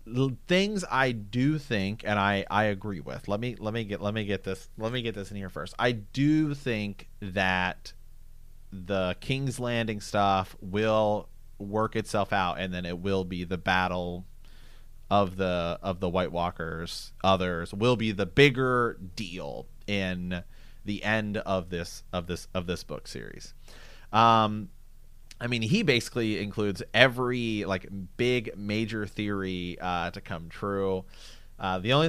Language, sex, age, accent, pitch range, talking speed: English, male, 30-49, American, 95-120 Hz, 160 wpm